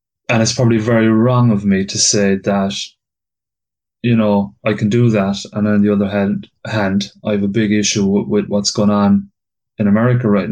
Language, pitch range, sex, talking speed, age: English, 100-120 Hz, male, 190 wpm, 30-49